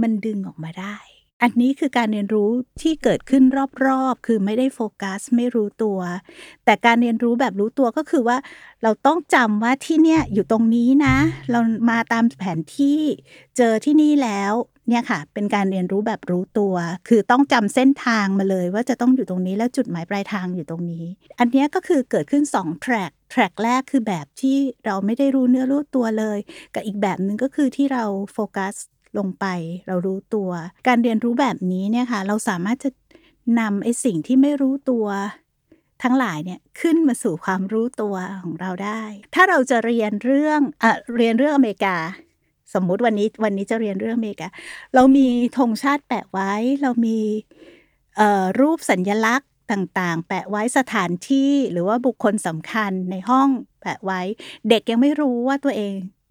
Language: English